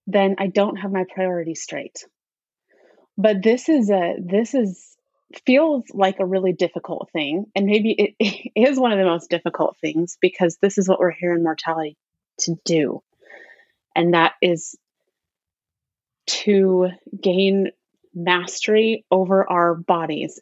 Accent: American